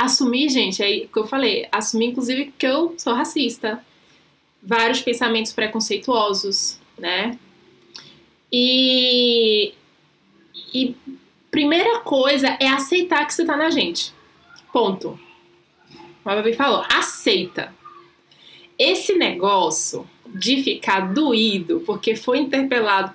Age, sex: 20-39, female